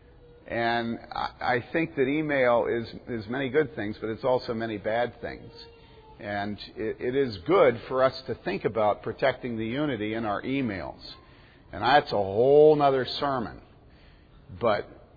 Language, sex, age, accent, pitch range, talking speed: English, male, 50-69, American, 110-140 Hz, 155 wpm